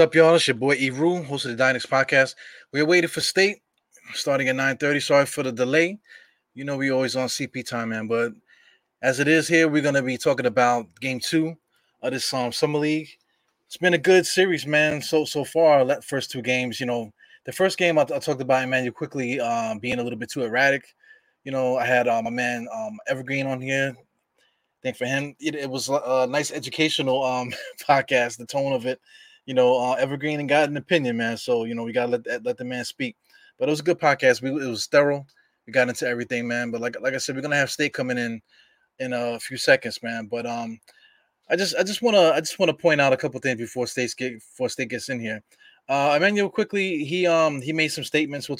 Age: 20-39